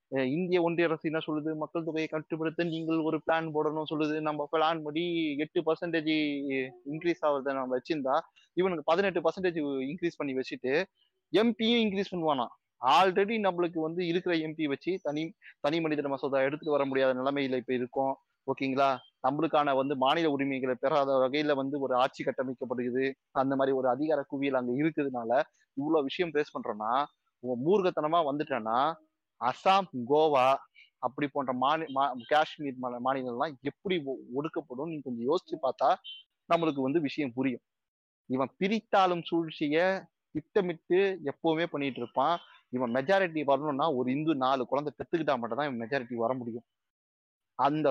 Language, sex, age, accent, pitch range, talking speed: Tamil, male, 20-39, native, 130-165 Hz, 130 wpm